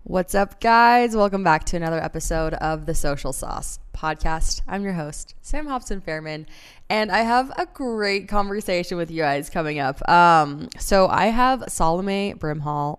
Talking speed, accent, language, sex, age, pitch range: 165 wpm, American, English, female, 20-39, 170-225 Hz